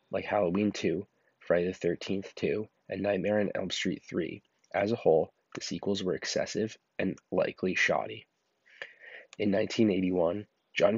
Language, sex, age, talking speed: English, male, 20-39, 140 wpm